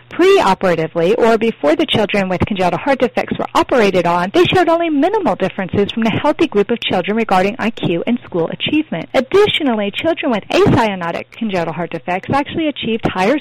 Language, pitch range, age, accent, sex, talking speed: English, 190-275 Hz, 40-59, American, female, 170 wpm